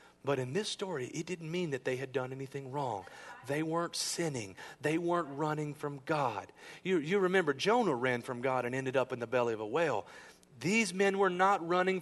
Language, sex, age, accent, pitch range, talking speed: English, male, 40-59, American, 115-160 Hz, 210 wpm